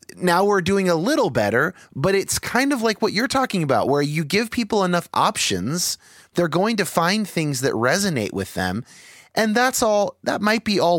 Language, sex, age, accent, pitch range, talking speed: English, male, 30-49, American, 140-195 Hz, 200 wpm